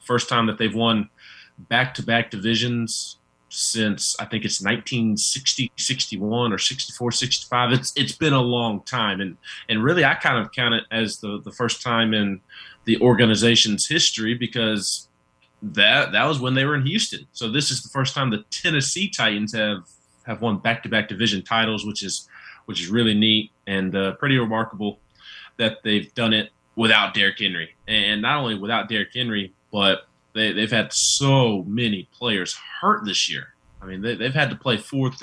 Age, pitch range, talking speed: 20-39, 100-125 Hz, 185 wpm